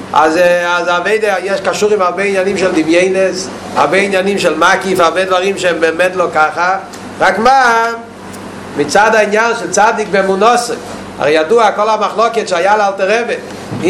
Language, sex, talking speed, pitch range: Hebrew, male, 145 wpm, 190-220 Hz